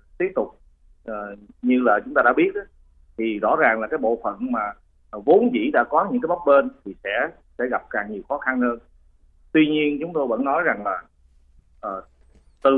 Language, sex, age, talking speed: Vietnamese, male, 30-49, 205 wpm